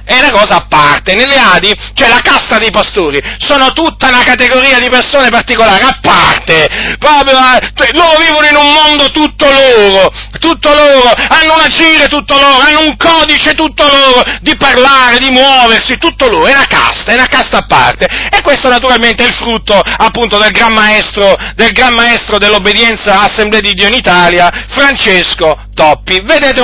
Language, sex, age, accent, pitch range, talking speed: Italian, male, 40-59, native, 205-270 Hz, 180 wpm